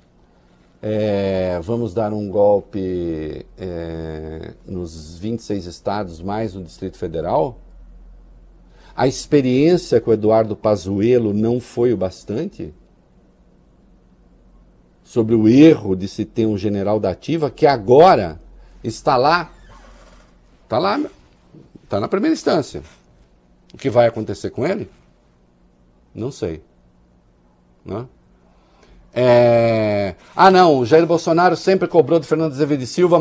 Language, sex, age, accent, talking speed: Portuguese, male, 50-69, Brazilian, 115 wpm